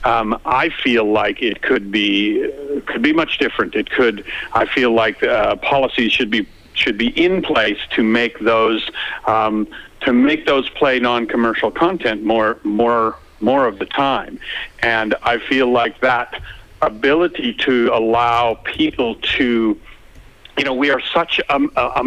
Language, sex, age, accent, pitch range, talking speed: English, male, 50-69, American, 110-130 Hz, 160 wpm